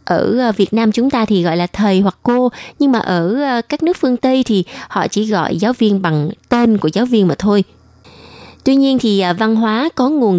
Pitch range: 180-235 Hz